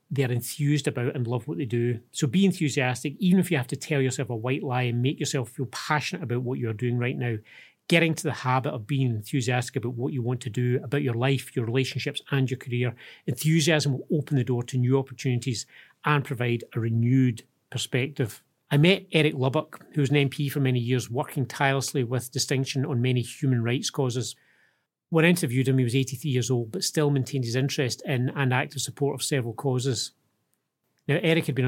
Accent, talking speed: British, 210 wpm